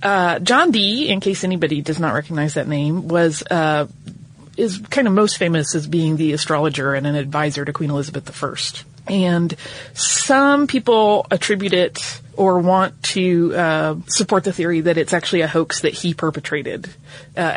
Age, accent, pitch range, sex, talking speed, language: 30-49, American, 150-195 Hz, female, 170 wpm, English